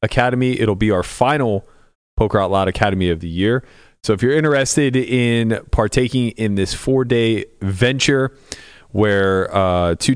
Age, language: 30-49, English